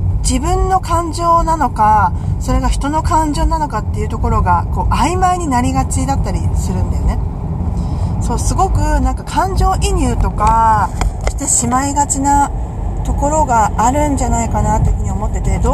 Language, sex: Japanese, female